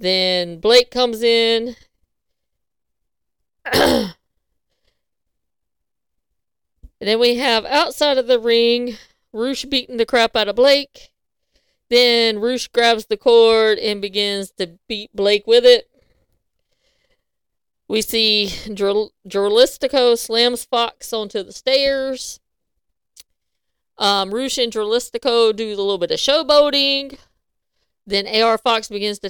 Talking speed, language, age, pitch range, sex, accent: 110 wpm, English, 40-59, 215-290 Hz, female, American